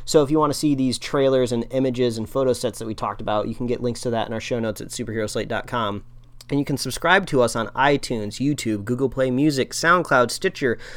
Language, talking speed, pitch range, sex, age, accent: English, 240 wpm, 120-140 Hz, male, 30-49, American